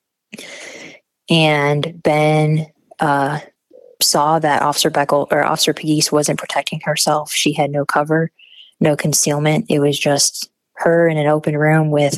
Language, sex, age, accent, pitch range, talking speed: English, female, 20-39, American, 145-160 Hz, 140 wpm